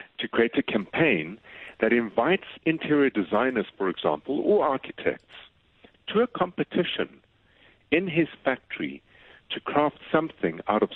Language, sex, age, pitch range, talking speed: English, male, 60-79, 105-135 Hz, 125 wpm